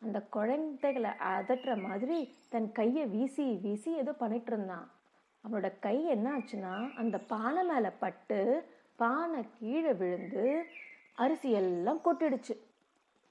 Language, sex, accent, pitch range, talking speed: Tamil, female, native, 210-275 Hz, 110 wpm